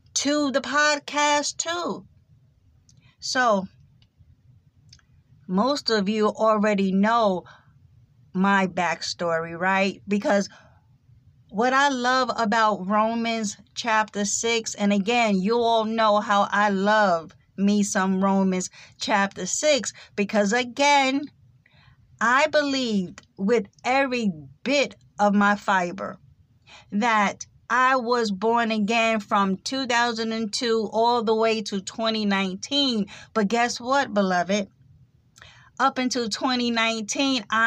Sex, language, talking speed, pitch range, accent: female, English, 100 wpm, 195-235 Hz, American